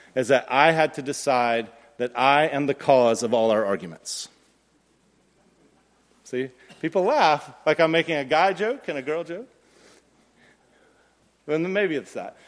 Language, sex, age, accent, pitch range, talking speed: English, male, 40-59, American, 155-215 Hz, 150 wpm